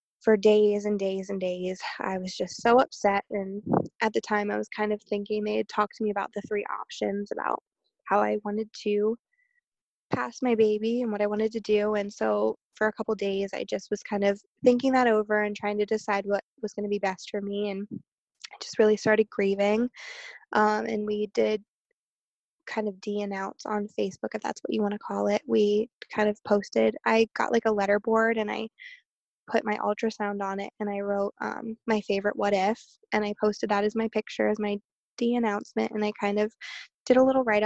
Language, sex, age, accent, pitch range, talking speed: English, female, 20-39, American, 200-220 Hz, 220 wpm